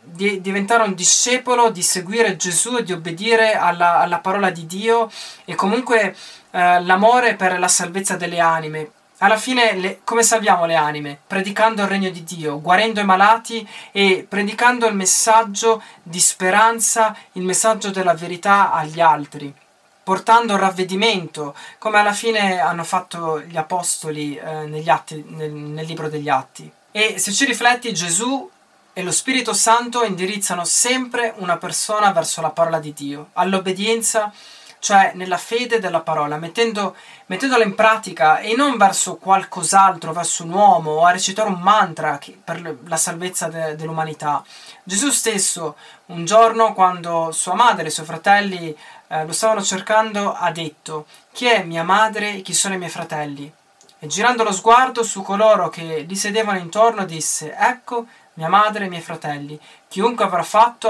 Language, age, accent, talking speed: Italian, 20-39, native, 155 wpm